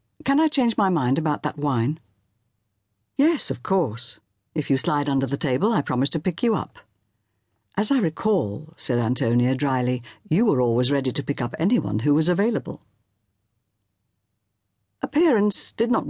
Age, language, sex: 60-79, English, female